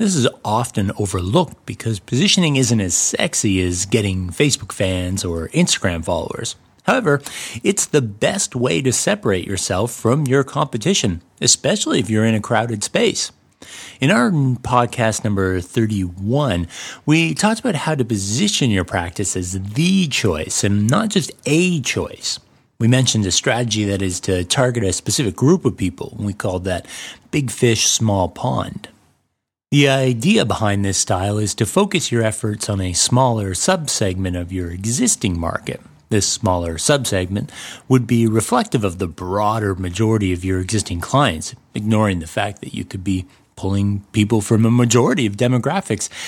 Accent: American